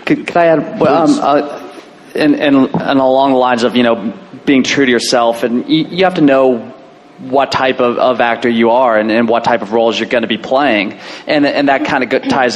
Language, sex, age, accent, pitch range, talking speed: English, male, 20-39, American, 110-125 Hz, 240 wpm